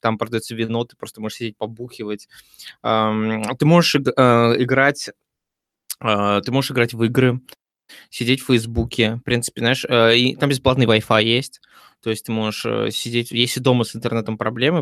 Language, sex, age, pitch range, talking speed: Russian, male, 20-39, 110-130 Hz, 145 wpm